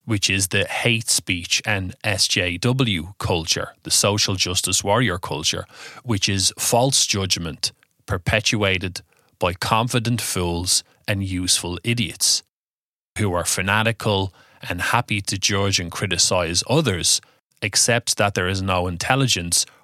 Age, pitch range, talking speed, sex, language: 20-39, 95-115 Hz, 120 wpm, male, English